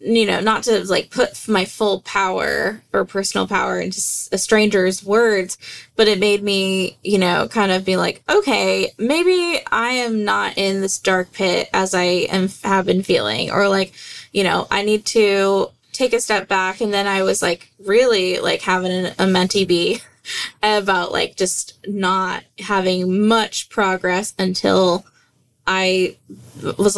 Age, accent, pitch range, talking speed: 20-39, American, 190-230 Hz, 160 wpm